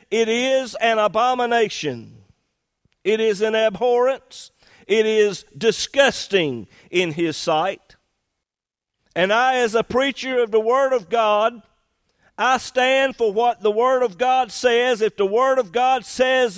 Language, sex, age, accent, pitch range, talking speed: English, male, 50-69, American, 205-260 Hz, 140 wpm